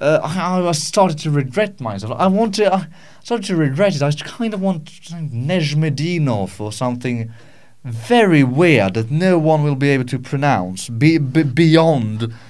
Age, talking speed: 30-49, 165 wpm